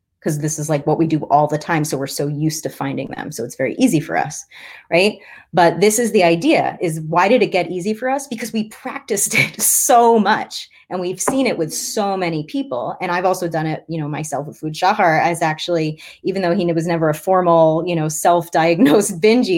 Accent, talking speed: American, 230 wpm